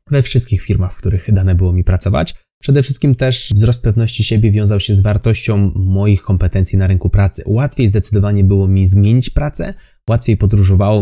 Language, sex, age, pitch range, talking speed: Polish, male, 20-39, 95-110 Hz, 175 wpm